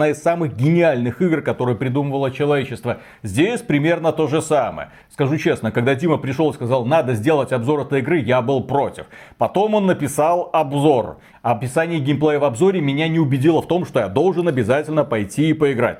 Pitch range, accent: 120-160 Hz, native